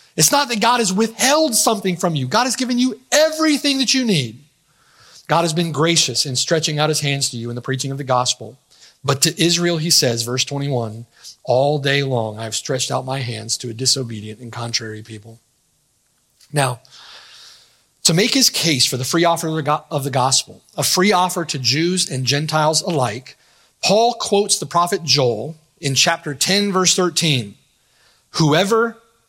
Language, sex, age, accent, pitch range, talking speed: English, male, 30-49, American, 135-215 Hz, 175 wpm